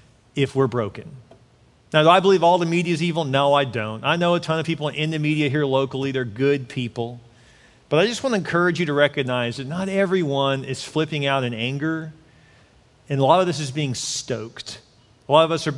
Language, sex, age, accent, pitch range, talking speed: English, male, 40-59, American, 130-185 Hz, 225 wpm